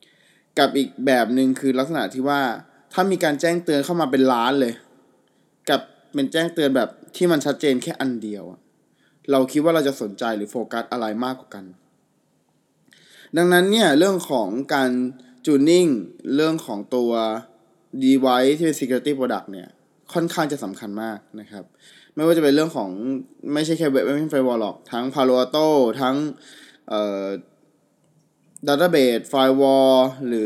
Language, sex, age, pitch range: Thai, male, 20-39, 125-155 Hz